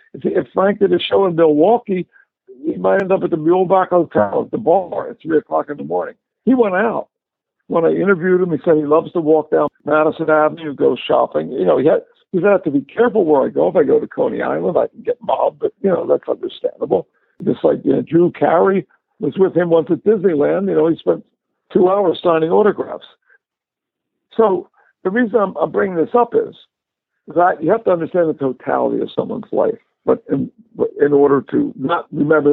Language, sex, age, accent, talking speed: English, male, 60-79, American, 210 wpm